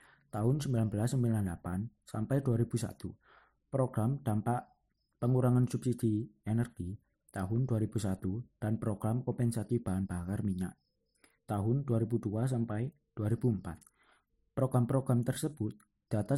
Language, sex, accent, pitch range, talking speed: Indonesian, male, native, 105-130 Hz, 85 wpm